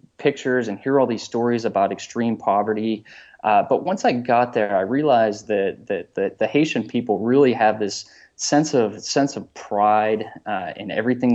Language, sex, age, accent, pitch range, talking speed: English, male, 20-39, American, 105-125 Hz, 180 wpm